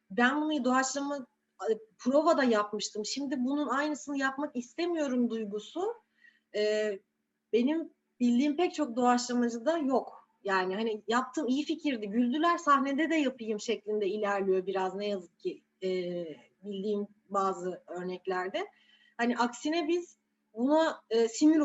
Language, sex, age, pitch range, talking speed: Turkish, female, 30-49, 215-290 Hz, 120 wpm